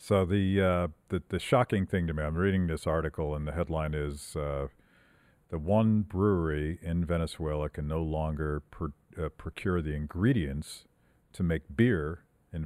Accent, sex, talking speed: American, male, 165 wpm